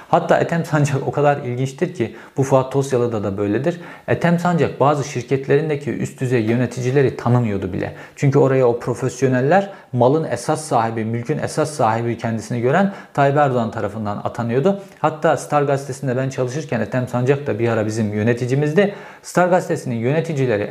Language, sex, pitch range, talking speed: Turkish, male, 115-150 Hz, 150 wpm